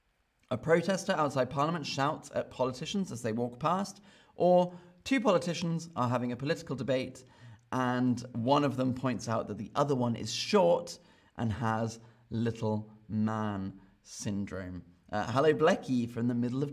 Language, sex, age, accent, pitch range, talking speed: English, male, 30-49, British, 120-155 Hz, 155 wpm